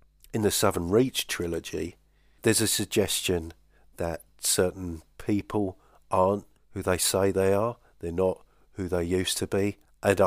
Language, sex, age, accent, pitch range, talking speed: English, male, 50-69, British, 90-100 Hz, 145 wpm